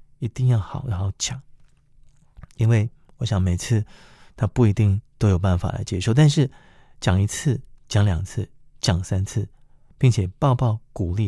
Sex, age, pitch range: male, 30-49, 95-135 Hz